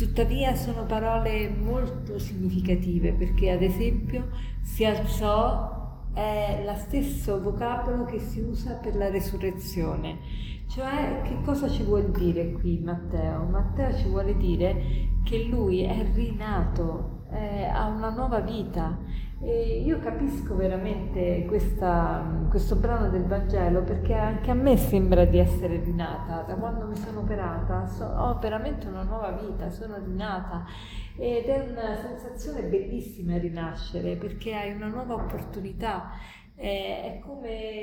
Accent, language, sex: native, Italian, female